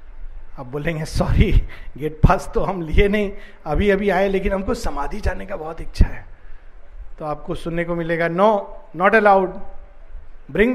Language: Hindi